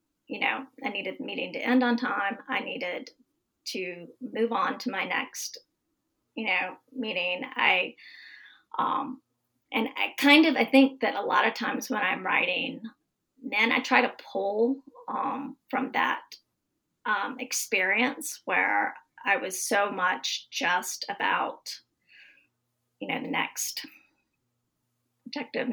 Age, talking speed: 30-49, 140 wpm